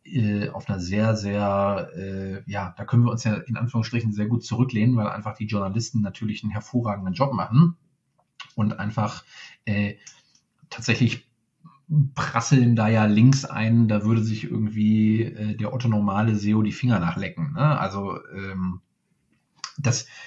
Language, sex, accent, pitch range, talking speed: German, male, German, 105-130 Hz, 140 wpm